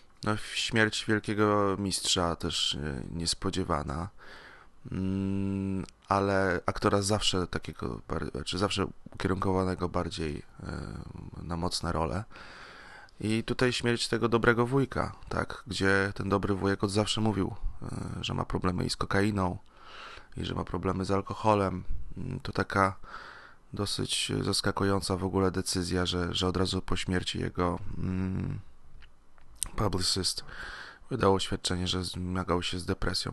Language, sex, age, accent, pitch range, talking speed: Polish, male, 20-39, native, 90-105 Hz, 115 wpm